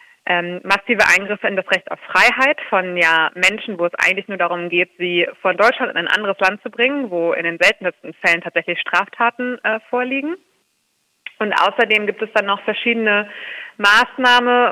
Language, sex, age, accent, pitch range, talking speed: German, female, 30-49, German, 185-240 Hz, 170 wpm